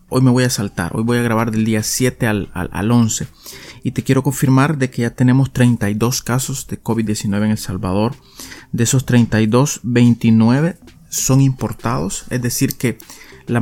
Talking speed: 180 wpm